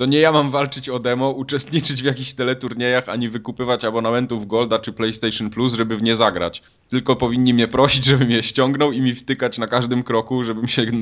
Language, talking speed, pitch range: Polish, 200 wpm, 110-125 Hz